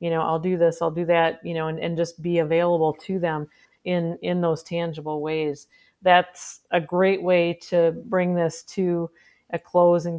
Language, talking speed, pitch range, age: English, 195 wpm, 175-200 Hz, 40-59